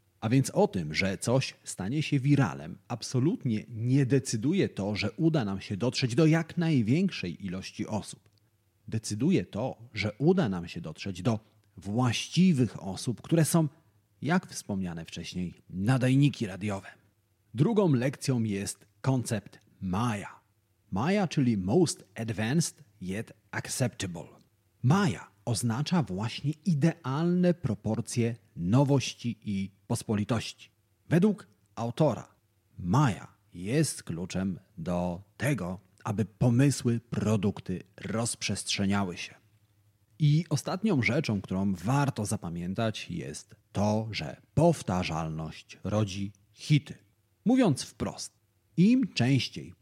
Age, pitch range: 40-59, 100-140 Hz